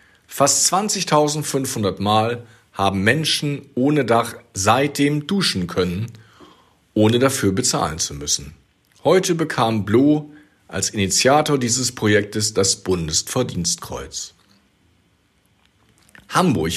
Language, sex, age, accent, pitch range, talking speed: German, male, 50-69, German, 95-135 Hz, 90 wpm